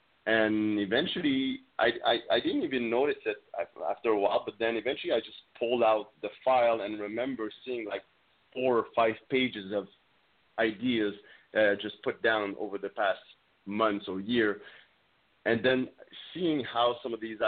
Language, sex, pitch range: English, male, 110-140 Hz